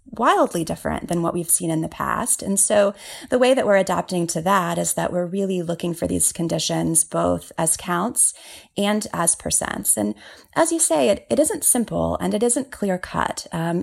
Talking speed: 200 wpm